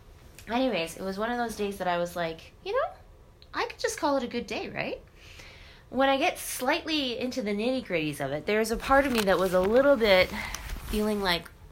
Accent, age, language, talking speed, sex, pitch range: American, 20-39, English, 225 wpm, female, 165-245 Hz